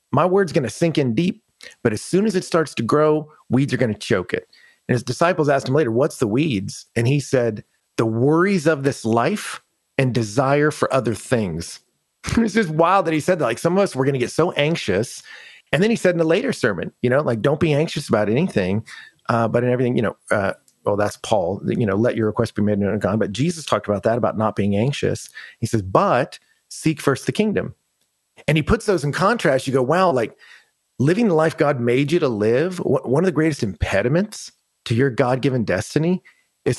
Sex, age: male, 40-59